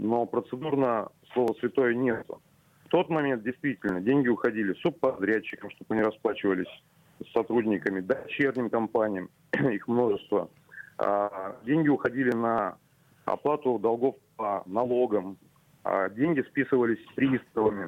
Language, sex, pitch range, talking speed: Russian, male, 110-140 Hz, 115 wpm